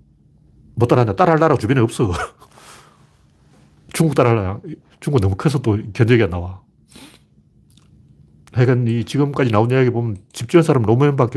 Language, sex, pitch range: Korean, male, 105-135 Hz